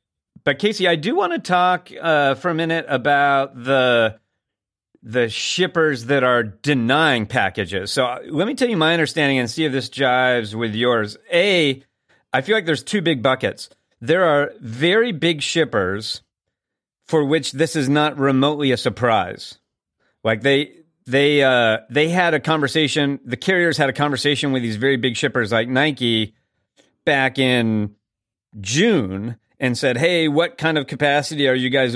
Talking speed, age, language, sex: 165 wpm, 40-59, English, male